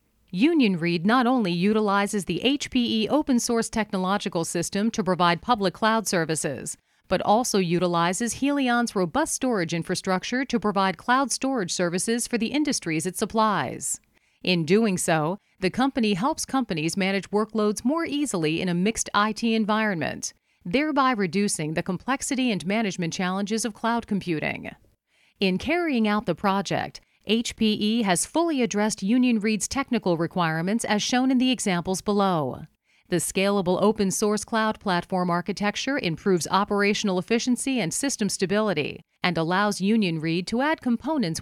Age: 40-59